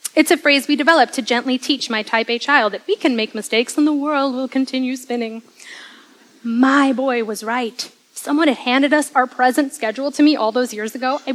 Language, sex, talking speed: English, female, 220 wpm